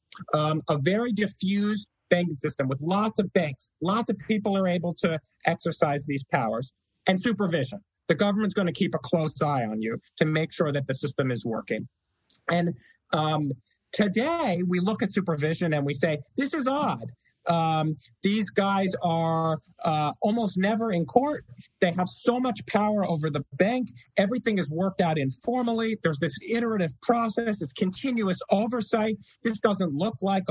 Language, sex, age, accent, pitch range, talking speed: English, male, 40-59, American, 160-215 Hz, 165 wpm